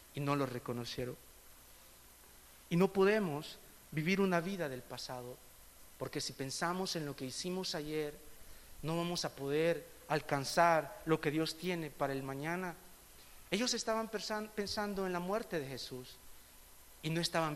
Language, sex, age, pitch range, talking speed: Spanish, male, 50-69, 145-210 Hz, 150 wpm